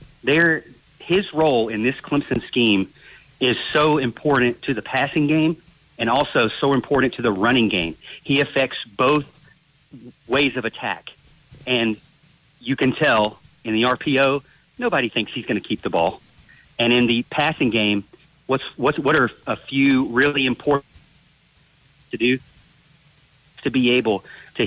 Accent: American